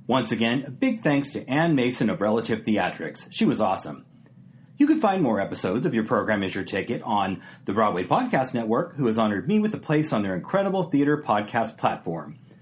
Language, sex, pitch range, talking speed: English, male, 115-190 Hz, 205 wpm